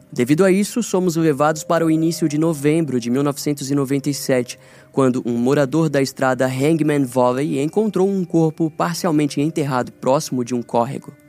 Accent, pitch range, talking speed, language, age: Brazilian, 125-150 Hz, 150 wpm, Portuguese, 10-29